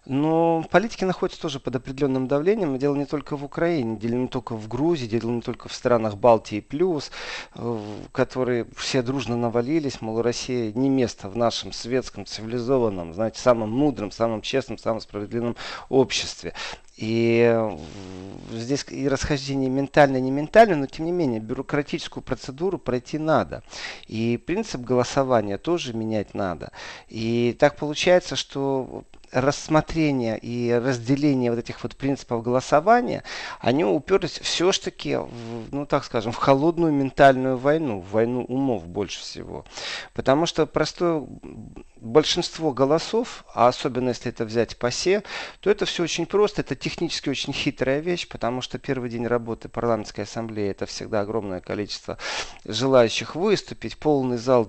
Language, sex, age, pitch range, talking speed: Russian, male, 40-59, 115-145 Hz, 140 wpm